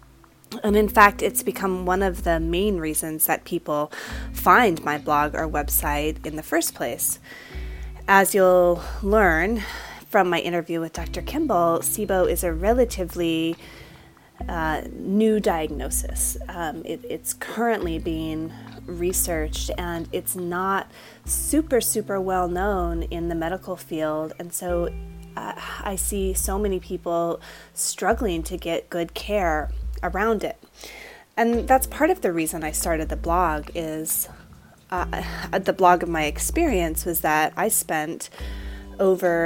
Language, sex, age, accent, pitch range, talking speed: English, female, 30-49, American, 155-190 Hz, 135 wpm